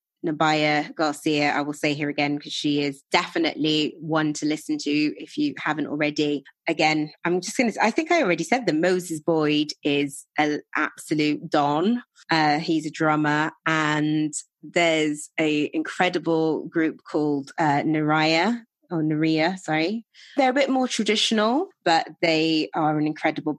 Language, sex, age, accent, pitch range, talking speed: English, female, 20-39, British, 150-180 Hz, 155 wpm